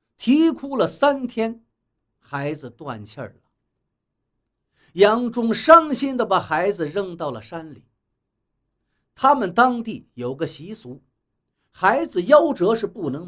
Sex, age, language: male, 50-69, Chinese